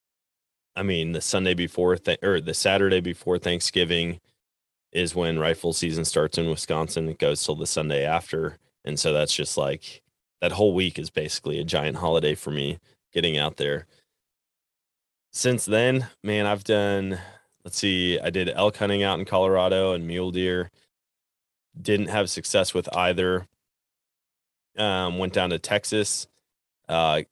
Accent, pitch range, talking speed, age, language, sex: American, 85-105 Hz, 150 wpm, 20-39, English, male